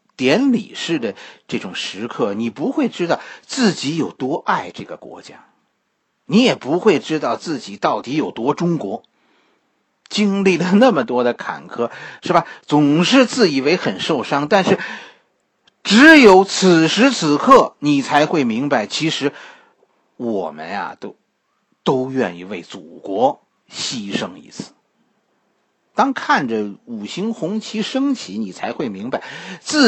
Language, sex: Chinese, male